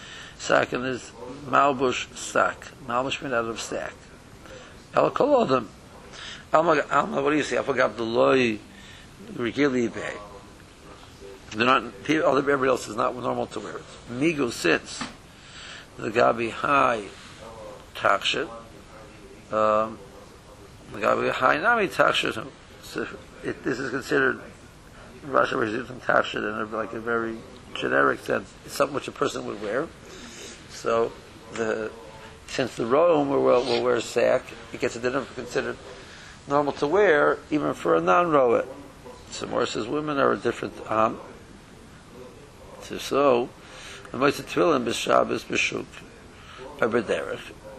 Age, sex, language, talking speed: 60-79, male, English, 130 wpm